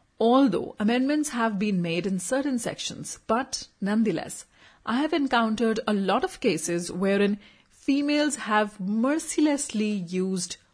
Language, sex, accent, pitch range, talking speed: Hindi, female, native, 185-260 Hz, 125 wpm